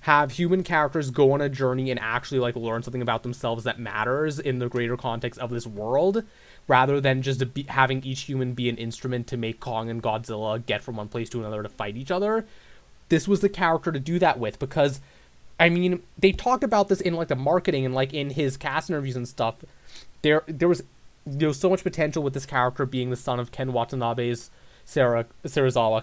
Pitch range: 115-145 Hz